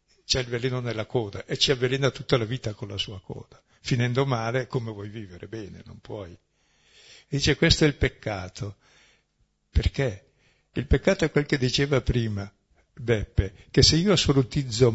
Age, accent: 60-79, native